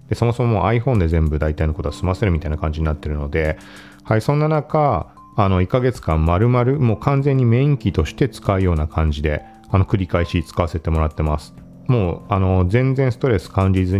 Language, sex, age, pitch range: Japanese, male, 40-59, 80-120 Hz